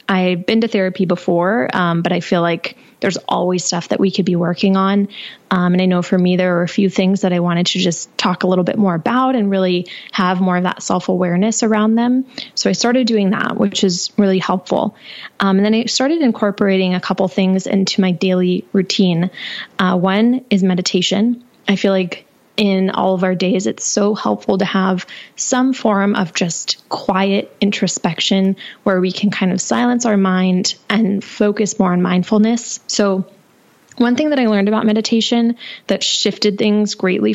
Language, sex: English, female